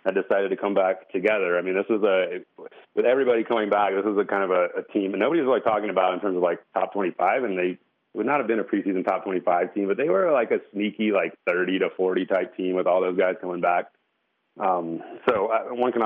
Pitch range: 95-110 Hz